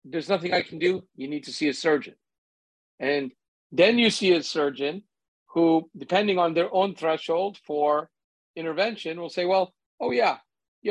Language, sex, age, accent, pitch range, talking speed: English, male, 50-69, American, 150-210 Hz, 170 wpm